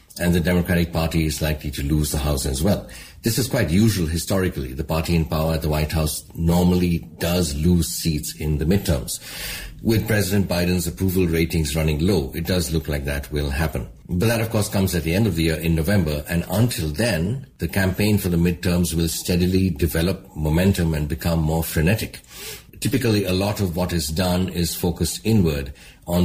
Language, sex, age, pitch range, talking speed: English, male, 60-79, 80-95 Hz, 195 wpm